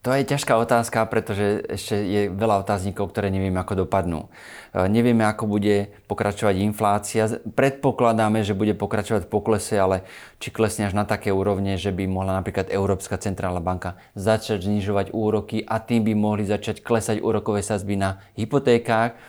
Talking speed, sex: 160 wpm, male